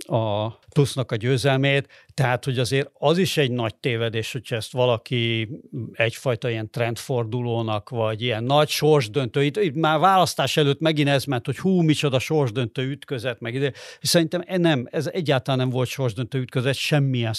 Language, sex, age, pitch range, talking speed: Hungarian, male, 50-69, 125-150 Hz, 160 wpm